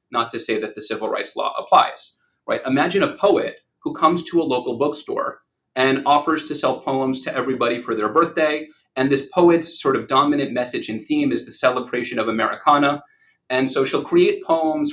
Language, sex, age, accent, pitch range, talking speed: English, male, 30-49, American, 120-155 Hz, 195 wpm